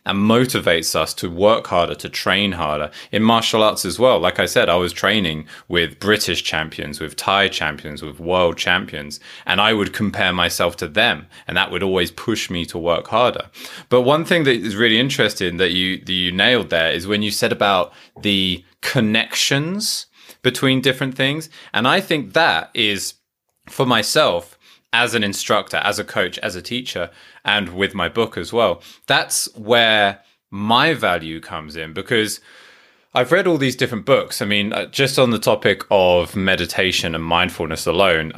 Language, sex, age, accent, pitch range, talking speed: English, male, 20-39, British, 90-125 Hz, 180 wpm